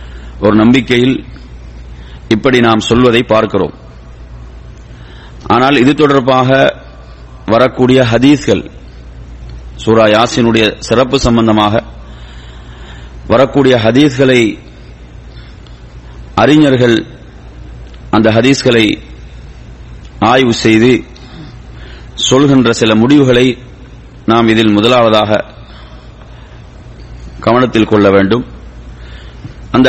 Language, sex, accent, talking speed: English, male, Indian, 60 wpm